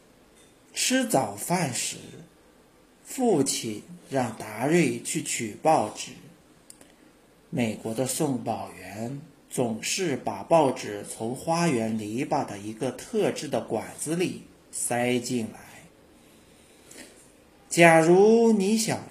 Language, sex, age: Chinese, male, 50-69